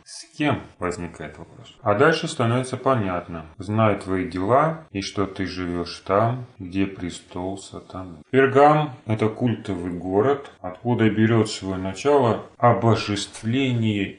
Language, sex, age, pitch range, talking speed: Russian, male, 30-49, 90-115 Hz, 125 wpm